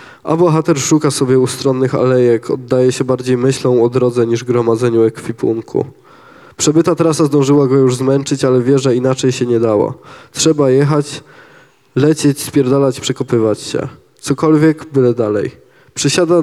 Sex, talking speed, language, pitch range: male, 140 wpm, Polish, 125-145 Hz